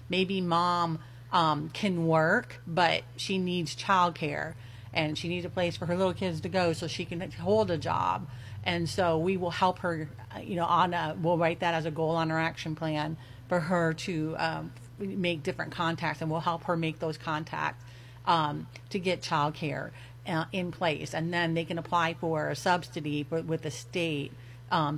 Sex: female